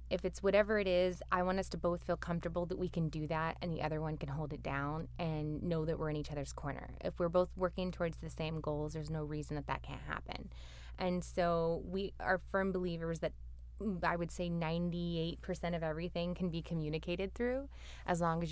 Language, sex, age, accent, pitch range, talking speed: English, female, 20-39, American, 160-200 Hz, 220 wpm